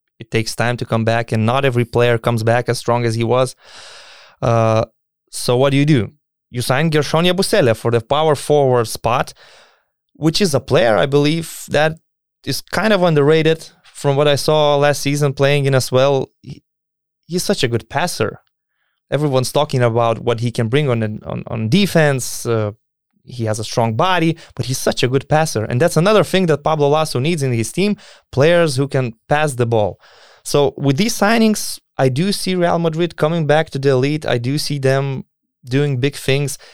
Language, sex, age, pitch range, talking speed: English, male, 20-39, 120-155 Hz, 195 wpm